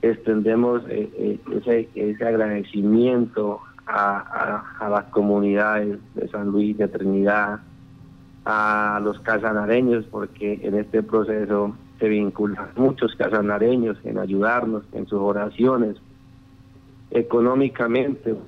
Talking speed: 100 wpm